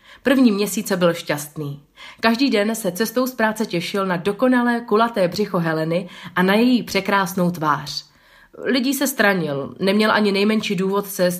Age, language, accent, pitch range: 30-49, Czech, native, 175-230 Hz